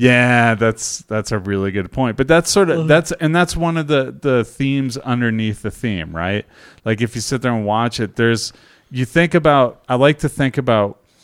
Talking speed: 215 wpm